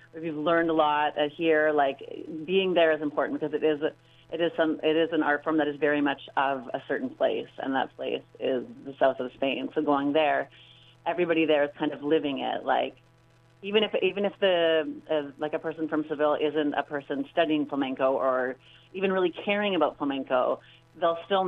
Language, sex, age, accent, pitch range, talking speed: English, female, 30-49, American, 145-175 Hz, 200 wpm